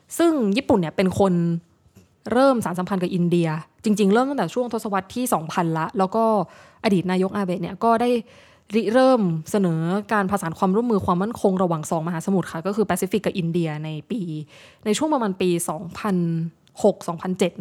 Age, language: 20-39, Thai